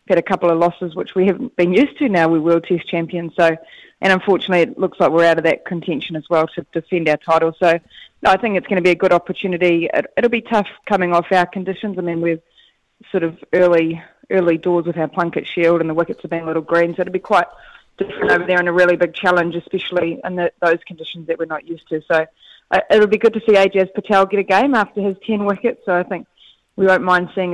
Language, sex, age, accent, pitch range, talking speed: English, female, 20-39, Australian, 170-190 Hz, 255 wpm